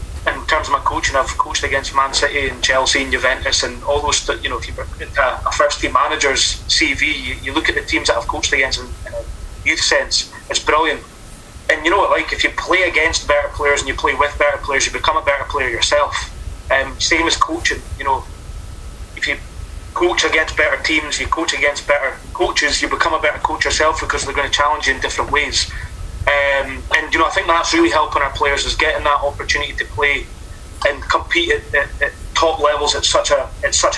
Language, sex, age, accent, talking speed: English, male, 20-39, British, 225 wpm